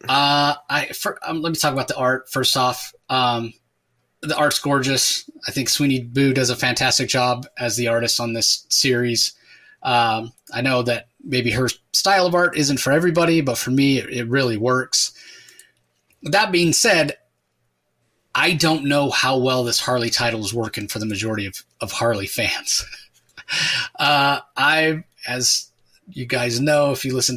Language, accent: English, American